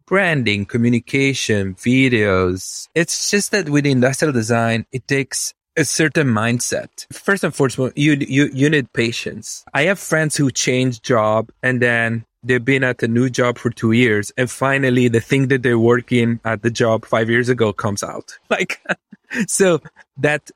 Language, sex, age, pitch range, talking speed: English, male, 30-49, 110-140 Hz, 165 wpm